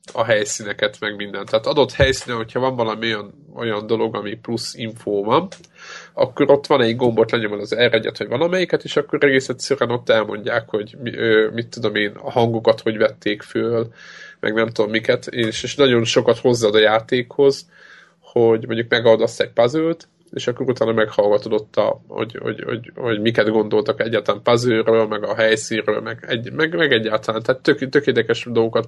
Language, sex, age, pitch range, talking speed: Hungarian, male, 20-39, 110-135 Hz, 170 wpm